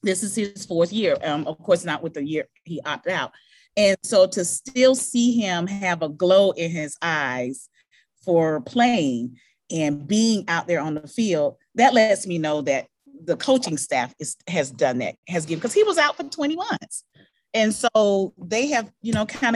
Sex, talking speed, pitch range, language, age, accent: female, 195 wpm, 155-225 Hz, English, 40-59, American